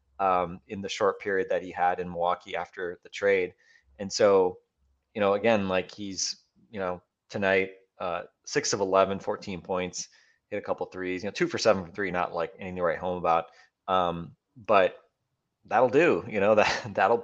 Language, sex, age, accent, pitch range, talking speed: English, male, 20-39, American, 95-110 Hz, 190 wpm